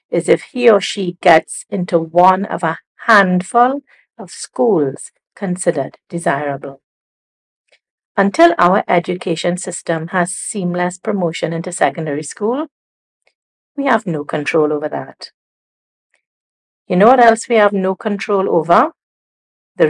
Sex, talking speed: female, 125 wpm